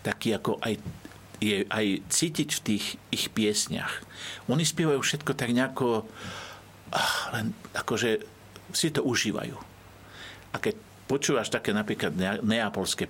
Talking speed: 120 wpm